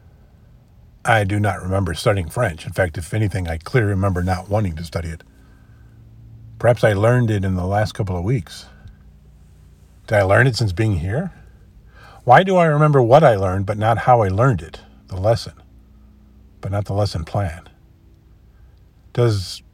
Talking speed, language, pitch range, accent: 170 wpm, English, 85-110 Hz, American